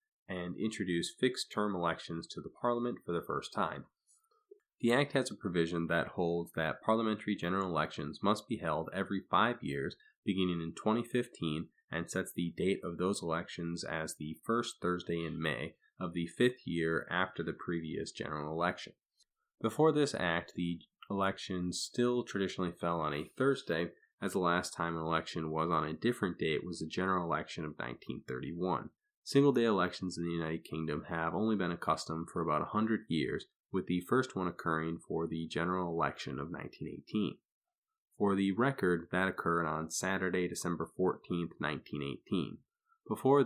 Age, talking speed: 30-49, 165 wpm